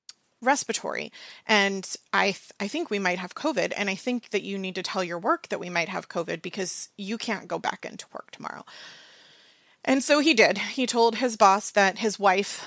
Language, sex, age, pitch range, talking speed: English, female, 30-49, 185-220 Hz, 205 wpm